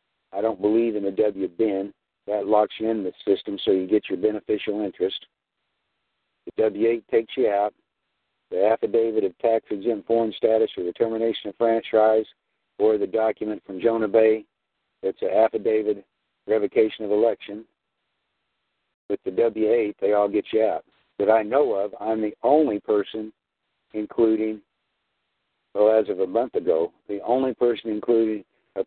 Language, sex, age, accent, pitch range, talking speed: English, male, 60-79, American, 105-130 Hz, 160 wpm